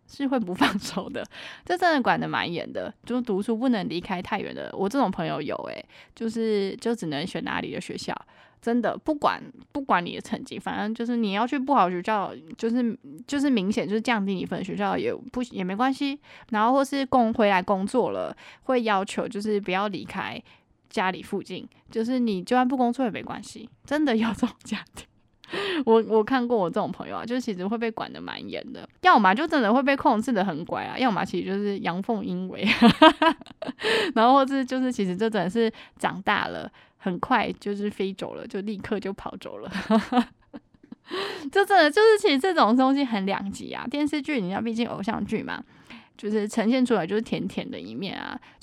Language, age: Chinese, 20-39